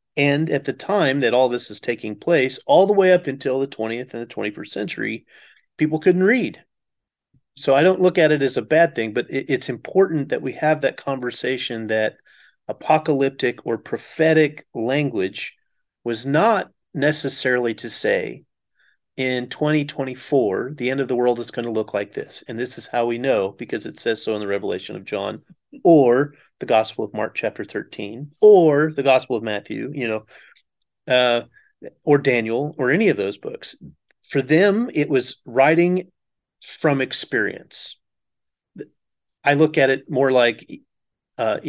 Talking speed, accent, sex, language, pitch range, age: 165 wpm, American, male, English, 120-145 Hz, 30-49